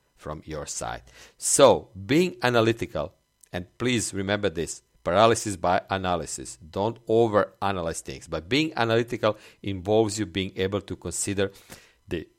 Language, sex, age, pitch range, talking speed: English, male, 50-69, 95-115 Hz, 125 wpm